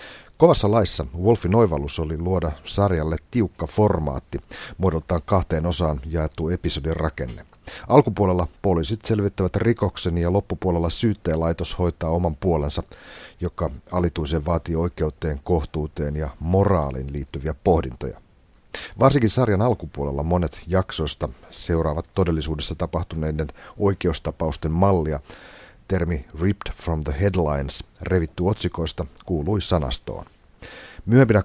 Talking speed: 105 wpm